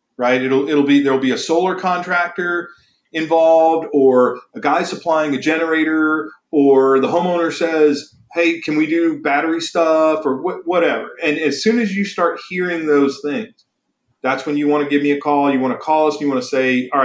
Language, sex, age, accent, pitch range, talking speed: English, male, 40-59, American, 140-180 Hz, 195 wpm